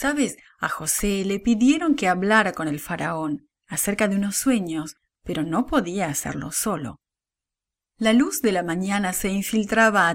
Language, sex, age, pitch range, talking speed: English, female, 30-49, 175-245 Hz, 160 wpm